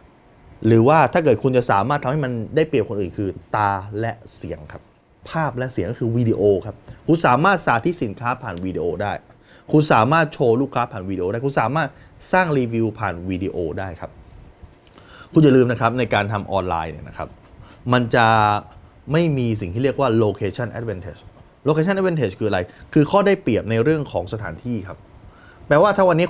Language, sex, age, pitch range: Thai, male, 20-39, 105-145 Hz